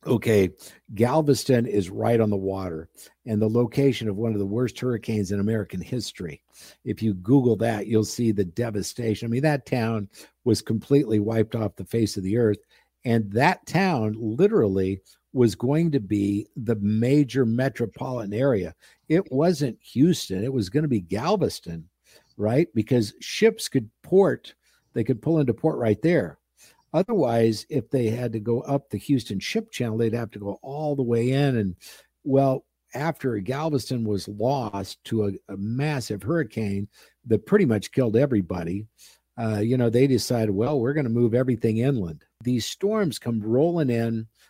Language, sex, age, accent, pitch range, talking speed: English, male, 50-69, American, 105-135 Hz, 170 wpm